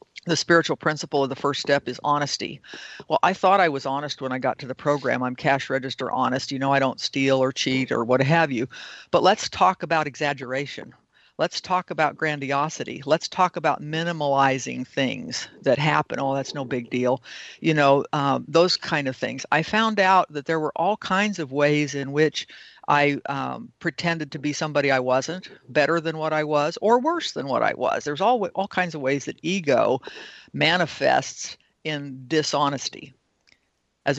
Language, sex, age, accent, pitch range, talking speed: English, female, 50-69, American, 135-170 Hz, 190 wpm